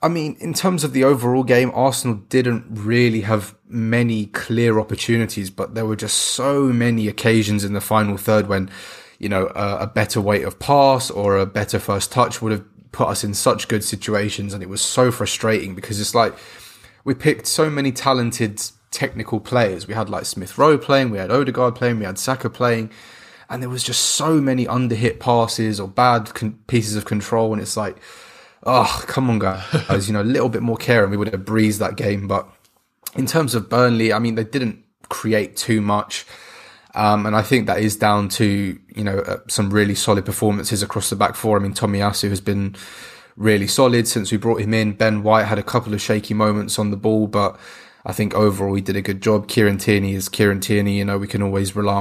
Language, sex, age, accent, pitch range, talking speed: English, male, 20-39, British, 100-120 Hz, 215 wpm